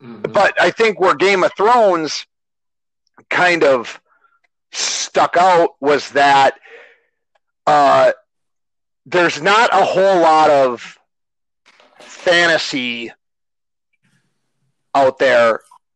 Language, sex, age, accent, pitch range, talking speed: English, male, 40-59, American, 145-200 Hz, 85 wpm